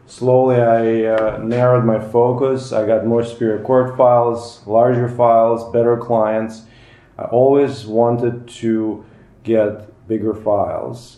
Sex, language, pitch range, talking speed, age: male, English, 105-120 Hz, 125 wpm, 30-49